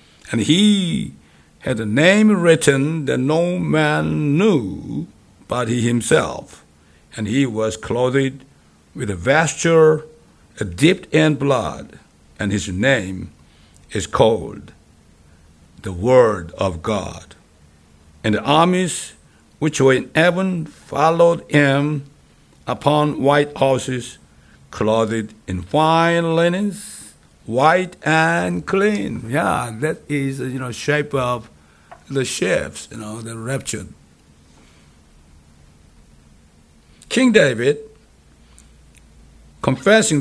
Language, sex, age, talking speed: English, male, 60-79, 100 wpm